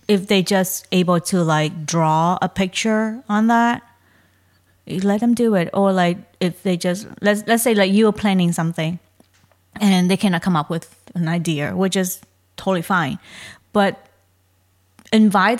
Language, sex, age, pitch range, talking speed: English, female, 20-39, 175-215 Hz, 160 wpm